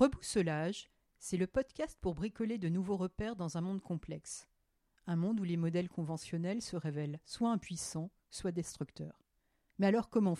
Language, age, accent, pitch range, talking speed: French, 50-69, French, 170-215 Hz, 160 wpm